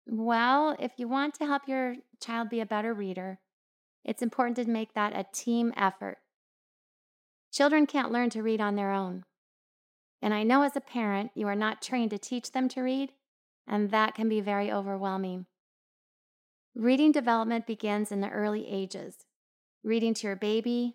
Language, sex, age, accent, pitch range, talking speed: English, female, 30-49, American, 210-260 Hz, 170 wpm